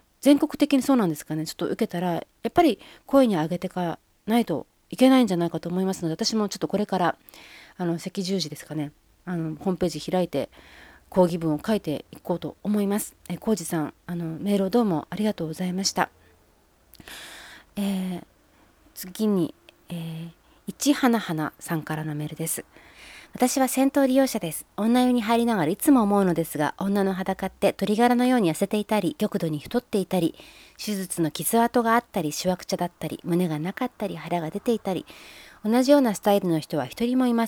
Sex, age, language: female, 30-49, Japanese